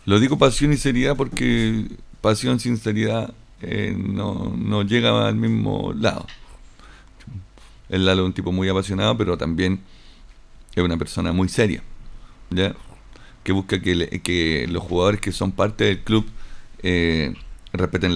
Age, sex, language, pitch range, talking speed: 50-69, male, Spanish, 95-110 Hz, 150 wpm